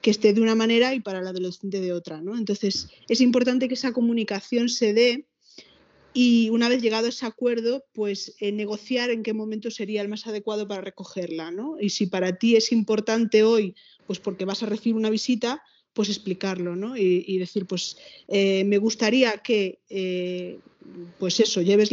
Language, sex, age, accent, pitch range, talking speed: Spanish, female, 20-39, Spanish, 195-235 Hz, 190 wpm